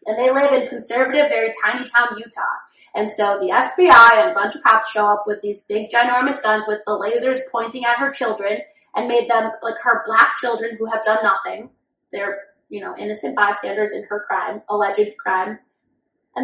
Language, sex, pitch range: English, female, 210-275 Hz